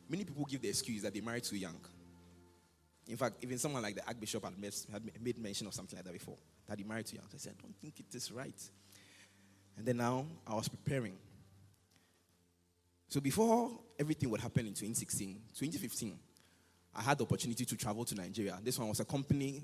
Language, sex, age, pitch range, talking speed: English, male, 20-39, 95-135 Hz, 200 wpm